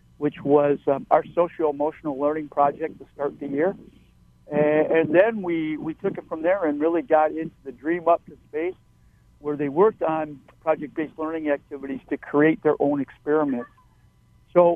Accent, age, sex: American, 60-79, male